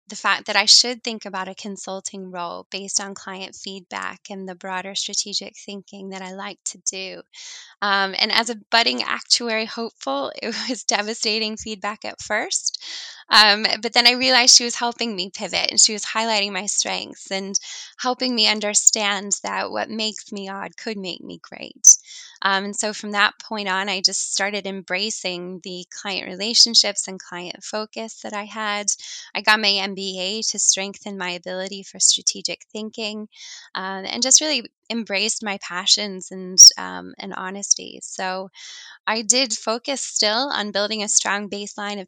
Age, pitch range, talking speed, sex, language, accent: 10-29, 190-220 Hz, 170 wpm, female, English, American